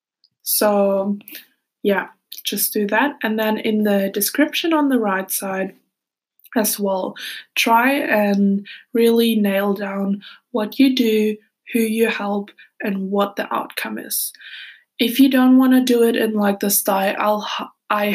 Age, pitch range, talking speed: 20-39, 200-240 Hz, 145 wpm